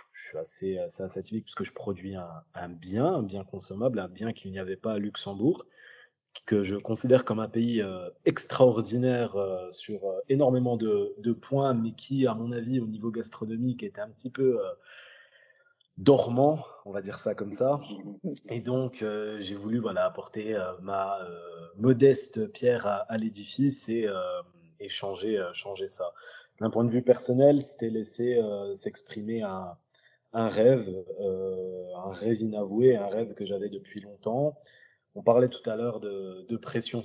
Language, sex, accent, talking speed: French, male, French, 175 wpm